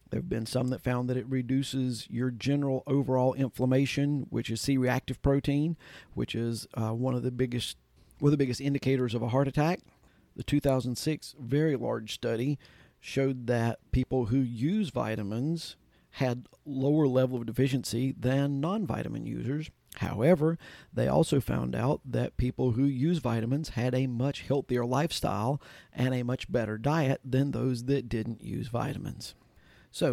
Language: English